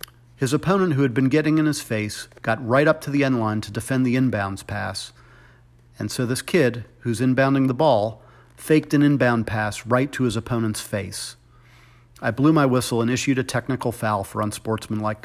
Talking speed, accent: 195 wpm, American